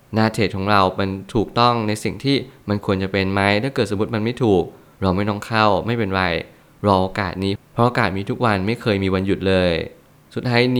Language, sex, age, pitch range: Thai, male, 20-39, 100-120 Hz